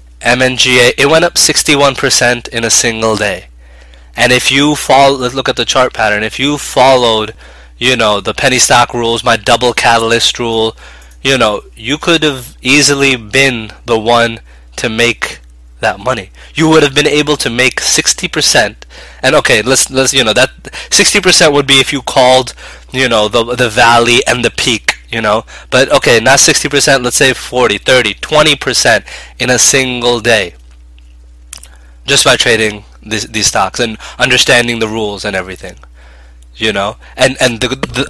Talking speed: 170 wpm